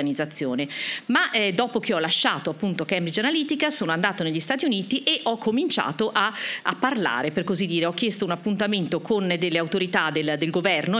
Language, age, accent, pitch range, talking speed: Italian, 40-59, native, 170-230 Hz, 180 wpm